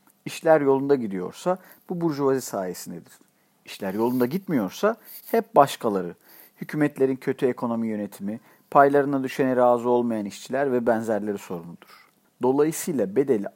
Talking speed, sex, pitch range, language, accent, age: 110 wpm, male, 115-155 Hz, Turkish, native, 50-69